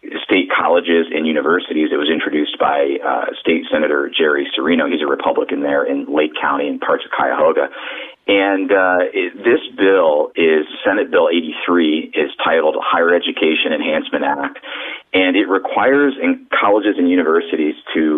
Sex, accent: male, American